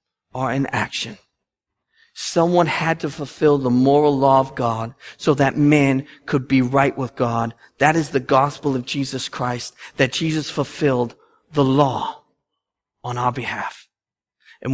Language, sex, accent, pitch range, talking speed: English, male, American, 135-170 Hz, 145 wpm